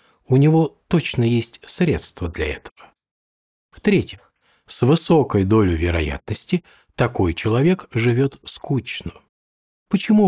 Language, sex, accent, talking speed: Russian, male, native, 100 wpm